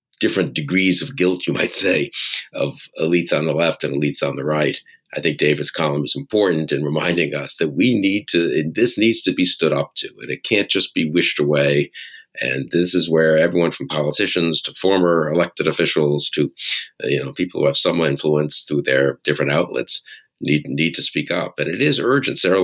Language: English